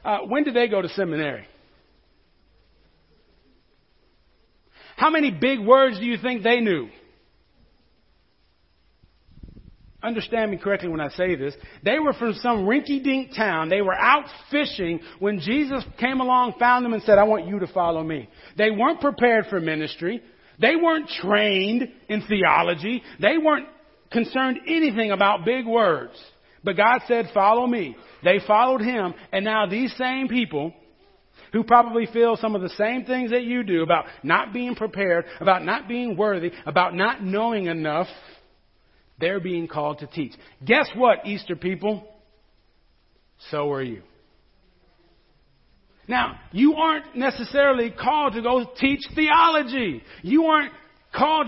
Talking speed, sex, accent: 145 wpm, male, American